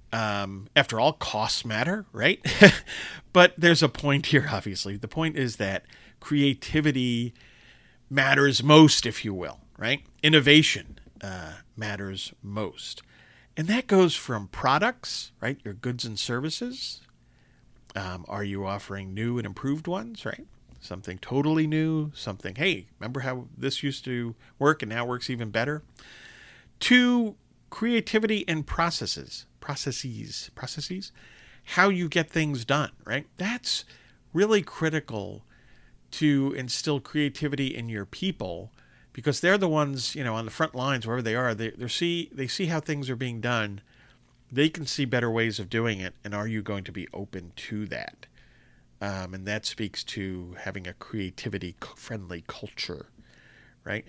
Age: 40-59